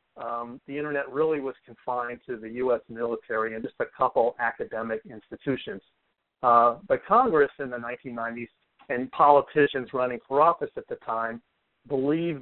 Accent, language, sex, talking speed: American, English, male, 150 wpm